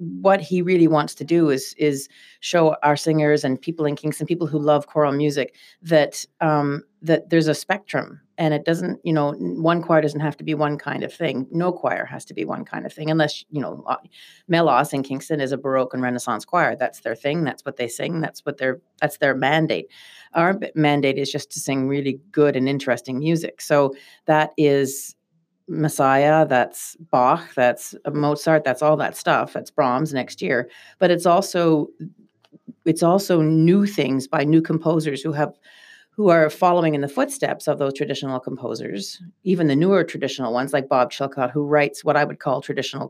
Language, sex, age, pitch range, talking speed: English, female, 40-59, 140-165 Hz, 195 wpm